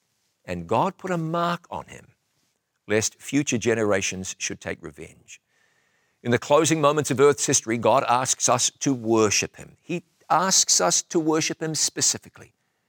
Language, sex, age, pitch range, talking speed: English, male, 50-69, 110-150 Hz, 155 wpm